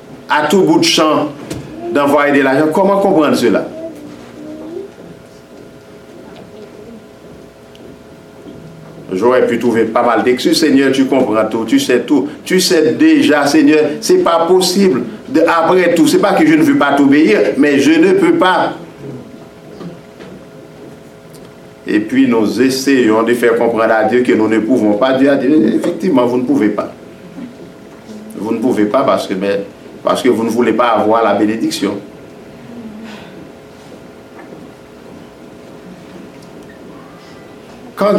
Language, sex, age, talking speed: French, male, 60-79, 135 wpm